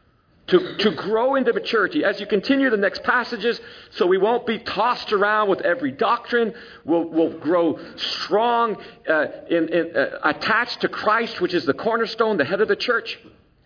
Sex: male